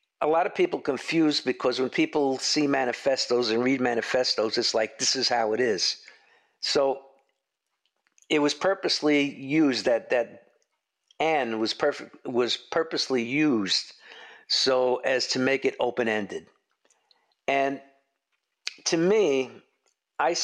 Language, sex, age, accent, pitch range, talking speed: English, male, 50-69, American, 130-170 Hz, 130 wpm